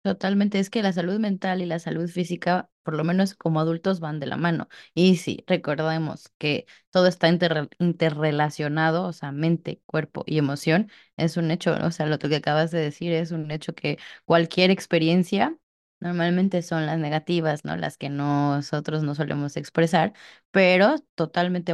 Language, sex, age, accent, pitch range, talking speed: Spanish, female, 20-39, Mexican, 155-180 Hz, 170 wpm